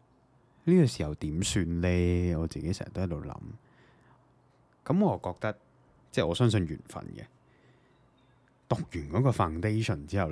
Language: Chinese